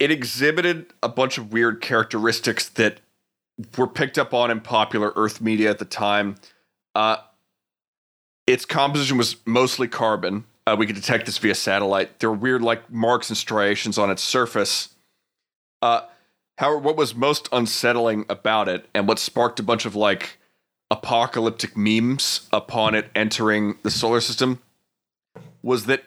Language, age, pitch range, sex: English, 30-49, 105-125 Hz, male